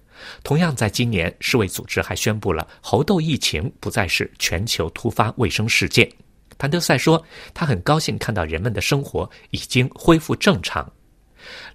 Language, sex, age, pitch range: Chinese, male, 50-69, 100-150 Hz